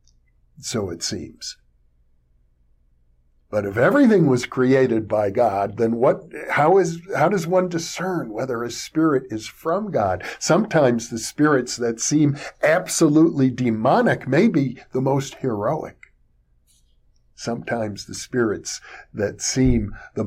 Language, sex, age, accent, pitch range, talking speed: English, male, 50-69, American, 100-150 Hz, 125 wpm